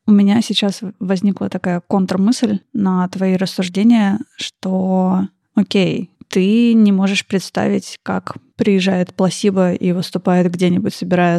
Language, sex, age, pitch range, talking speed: Russian, female, 20-39, 185-205 Hz, 115 wpm